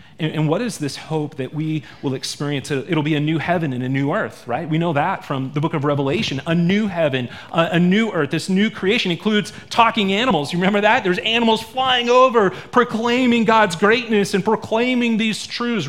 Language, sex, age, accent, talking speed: English, male, 30-49, American, 200 wpm